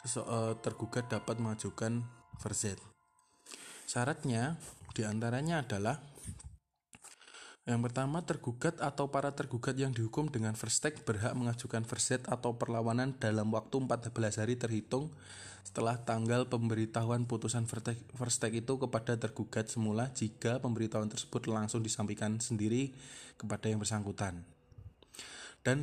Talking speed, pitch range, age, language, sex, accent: 105 wpm, 105-125 Hz, 20-39, Indonesian, male, native